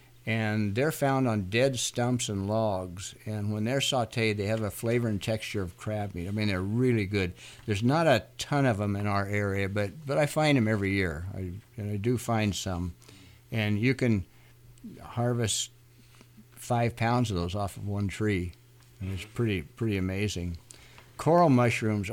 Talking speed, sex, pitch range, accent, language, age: 180 wpm, male, 105-125 Hz, American, English, 60-79